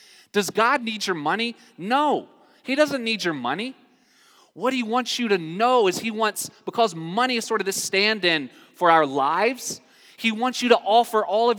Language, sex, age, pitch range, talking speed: English, male, 20-39, 150-220 Hz, 190 wpm